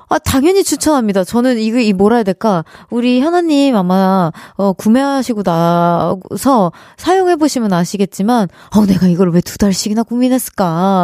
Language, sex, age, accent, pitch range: Korean, female, 20-39, native, 195-275 Hz